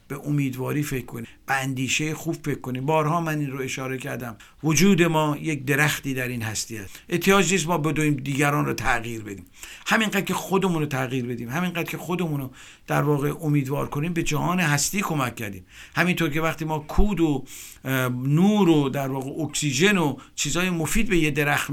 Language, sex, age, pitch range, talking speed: Persian, male, 50-69, 135-175 Hz, 185 wpm